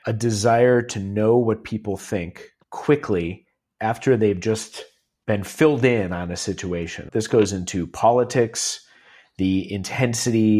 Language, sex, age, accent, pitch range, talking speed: English, male, 40-59, American, 100-130 Hz, 130 wpm